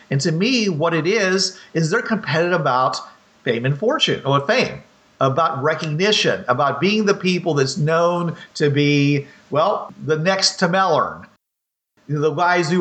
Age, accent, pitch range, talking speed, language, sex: 50-69, American, 145-200 Hz, 165 wpm, English, male